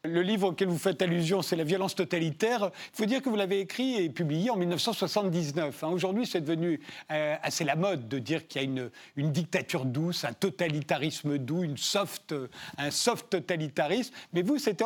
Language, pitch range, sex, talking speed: French, 155-195 Hz, male, 195 wpm